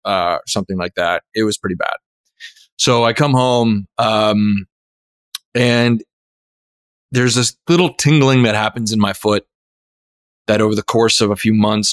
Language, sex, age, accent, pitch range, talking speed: English, male, 20-39, American, 100-120 Hz, 155 wpm